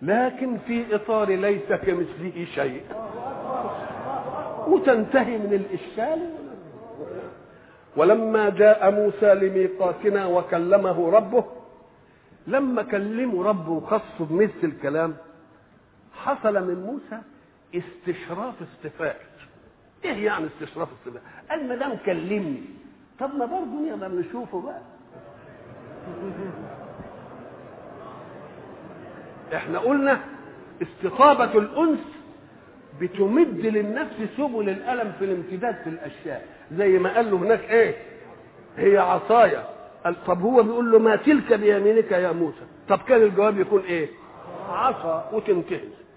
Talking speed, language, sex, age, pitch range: 100 wpm, Vietnamese, male, 50-69, 175-250 Hz